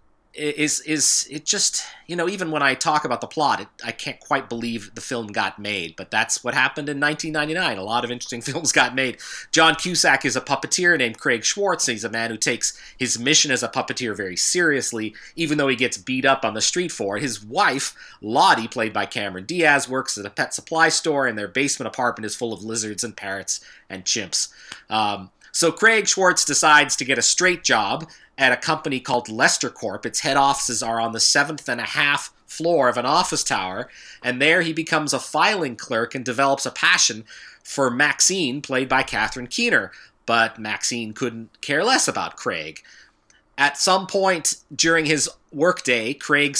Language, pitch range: English, 115-155 Hz